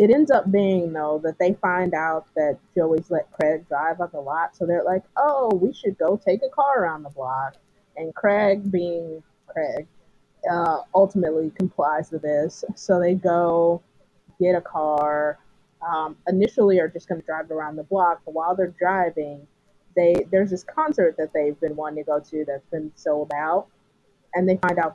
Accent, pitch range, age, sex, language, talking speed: American, 155-190 Hz, 20-39, female, English, 190 wpm